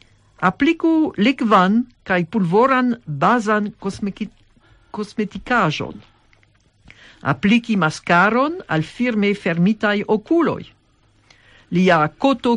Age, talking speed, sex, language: 60-79, 70 wpm, female, English